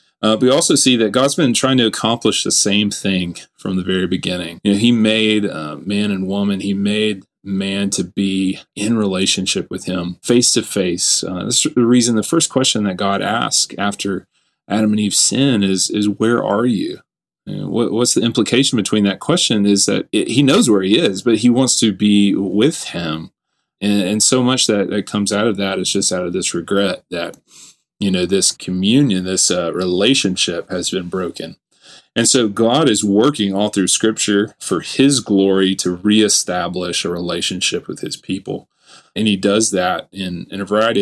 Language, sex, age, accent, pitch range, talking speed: English, male, 30-49, American, 95-110 Hz, 195 wpm